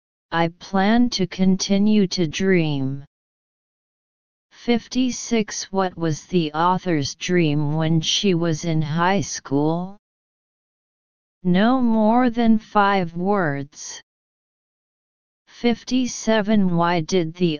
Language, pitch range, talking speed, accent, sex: English, 165-210 Hz, 90 wpm, American, female